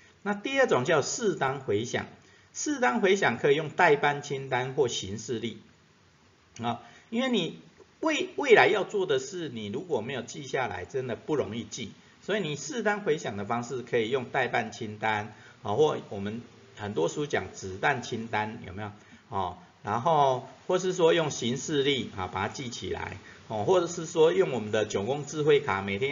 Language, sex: Chinese, male